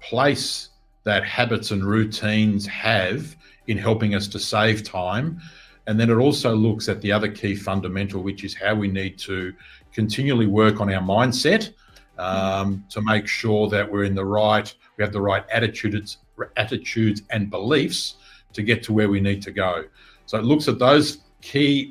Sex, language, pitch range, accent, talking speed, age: male, English, 100-120 Hz, Australian, 175 wpm, 50-69